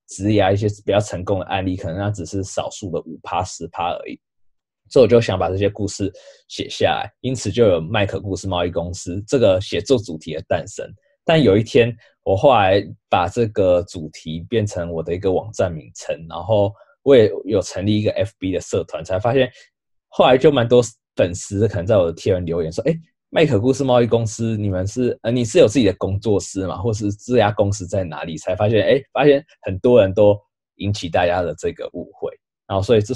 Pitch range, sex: 95-120 Hz, male